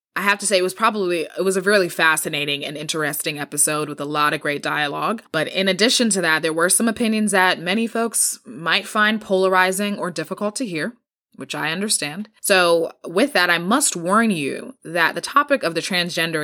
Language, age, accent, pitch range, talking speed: English, 20-39, American, 155-200 Hz, 205 wpm